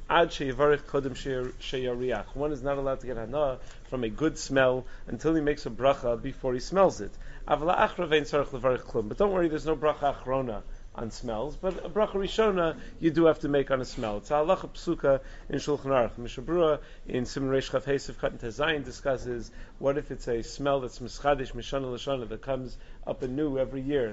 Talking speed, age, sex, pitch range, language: 175 wpm, 30-49, male, 125-150 Hz, English